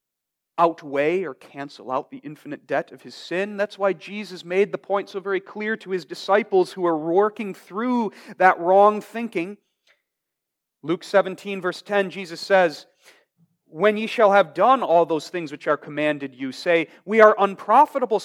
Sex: male